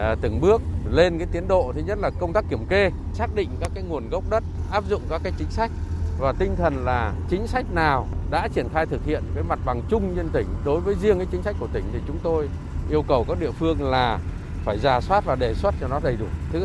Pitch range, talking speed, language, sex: 80-95 Hz, 260 wpm, Vietnamese, male